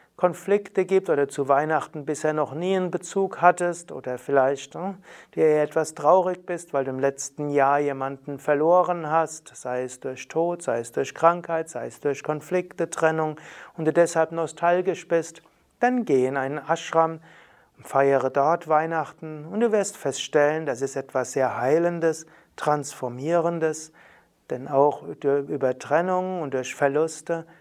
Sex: male